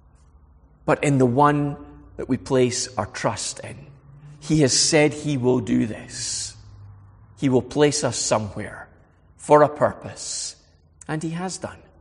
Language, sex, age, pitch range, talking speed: English, male, 40-59, 125-195 Hz, 145 wpm